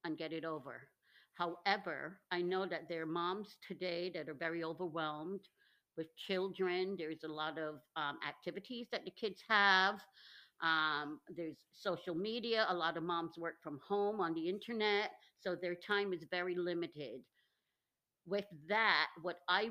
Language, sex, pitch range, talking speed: English, female, 170-200 Hz, 160 wpm